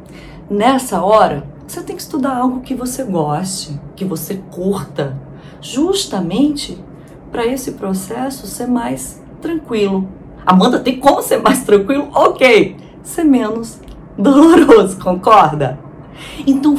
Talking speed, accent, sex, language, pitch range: 115 wpm, Brazilian, female, Portuguese, 155-250 Hz